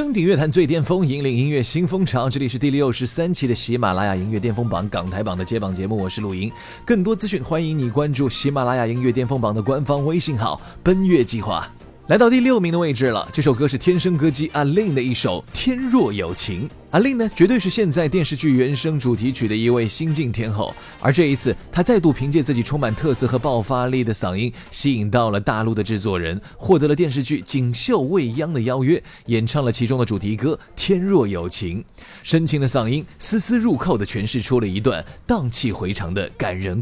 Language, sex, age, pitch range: Chinese, male, 30-49, 115-160 Hz